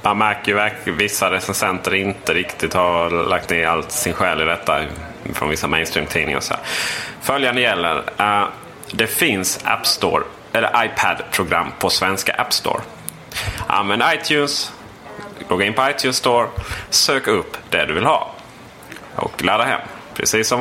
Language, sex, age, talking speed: Swedish, male, 30-49, 155 wpm